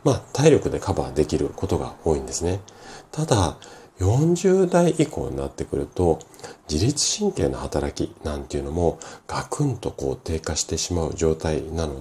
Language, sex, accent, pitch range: Japanese, male, native, 75-105 Hz